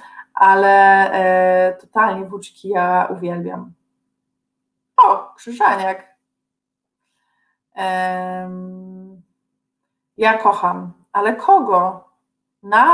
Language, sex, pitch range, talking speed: Polish, female, 185-220 Hz, 65 wpm